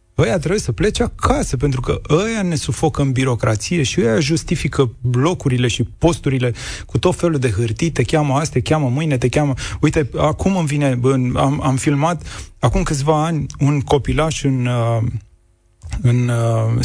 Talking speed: 160 wpm